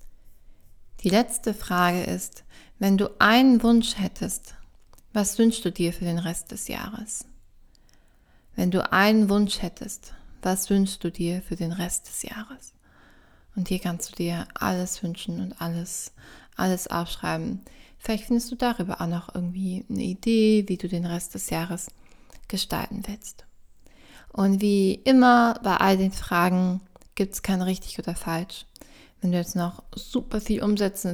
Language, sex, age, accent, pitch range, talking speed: German, female, 20-39, German, 175-215 Hz, 155 wpm